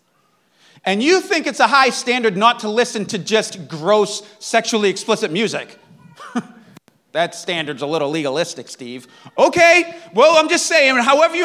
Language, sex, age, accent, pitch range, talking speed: English, male, 30-49, American, 195-270 Hz, 150 wpm